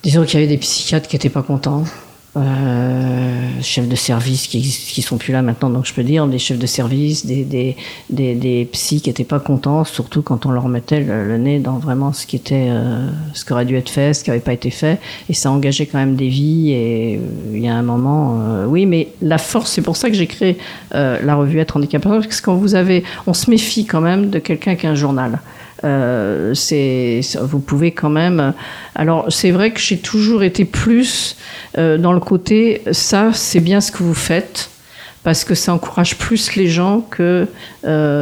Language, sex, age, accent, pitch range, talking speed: French, female, 50-69, French, 135-165 Hz, 225 wpm